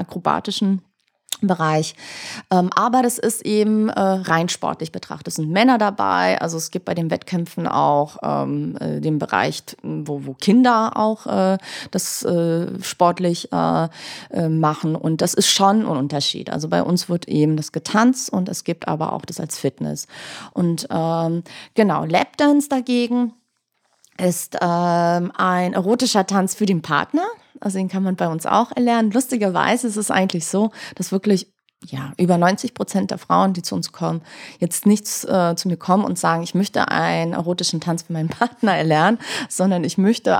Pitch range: 165-215 Hz